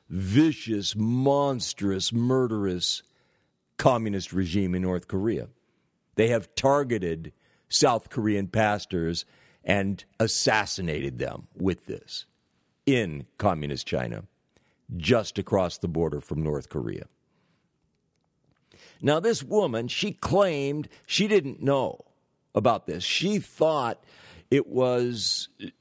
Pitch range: 100-140 Hz